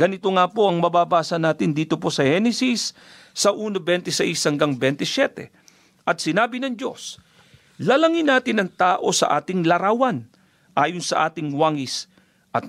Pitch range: 165-195 Hz